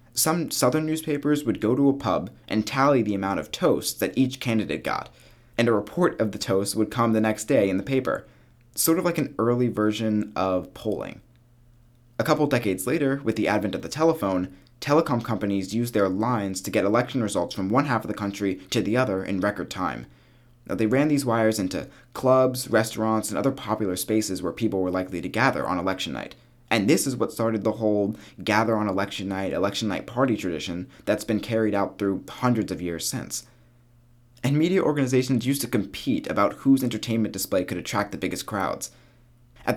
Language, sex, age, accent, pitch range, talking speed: English, male, 20-39, American, 100-125 Hz, 190 wpm